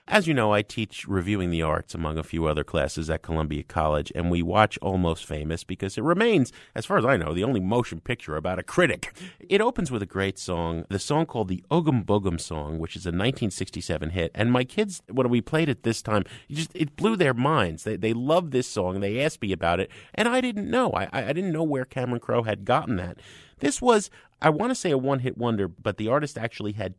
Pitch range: 95-155 Hz